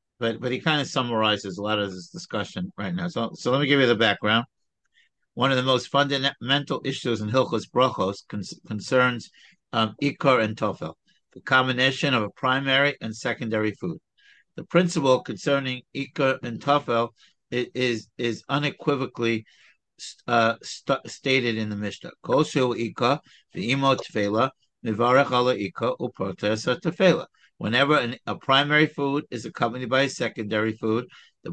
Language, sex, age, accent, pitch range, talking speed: English, male, 60-79, American, 110-135 Hz, 145 wpm